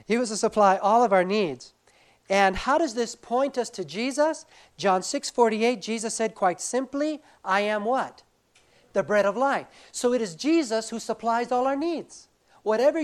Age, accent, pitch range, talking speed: 50-69, American, 155-225 Hz, 180 wpm